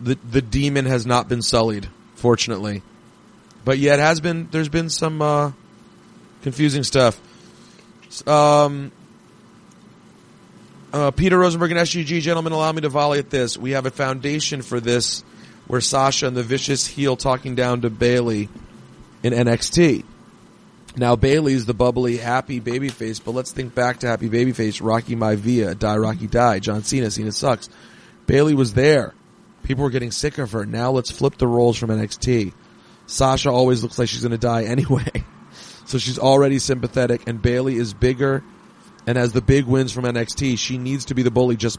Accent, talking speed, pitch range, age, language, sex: American, 170 wpm, 120-140 Hz, 30-49, English, male